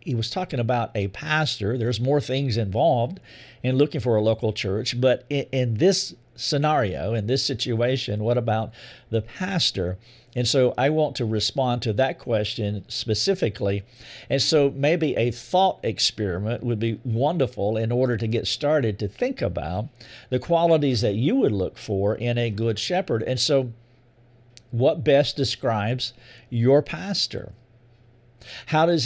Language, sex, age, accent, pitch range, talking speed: English, male, 50-69, American, 110-145 Hz, 155 wpm